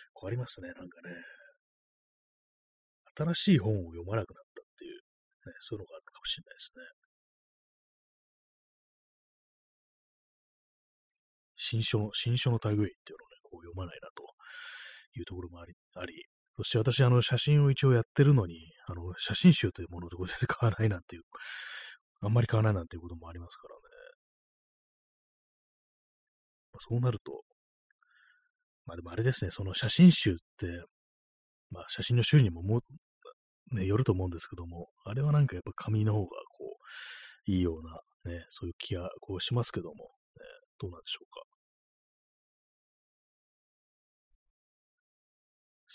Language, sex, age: Japanese, male, 30-49